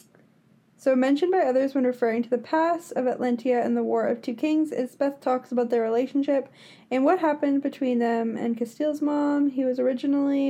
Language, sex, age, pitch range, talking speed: English, female, 10-29, 235-280 Hz, 195 wpm